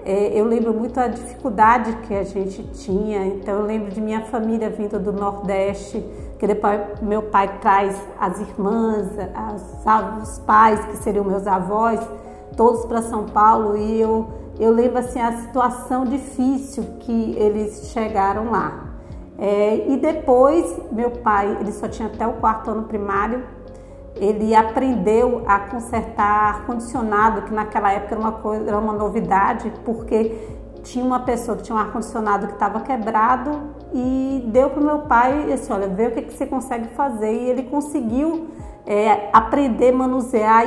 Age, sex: 40-59, female